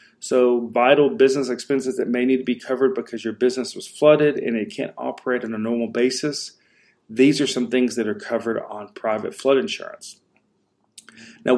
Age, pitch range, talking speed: 40-59, 115-135 Hz, 180 wpm